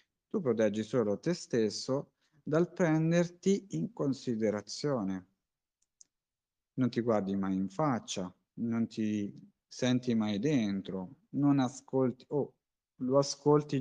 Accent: native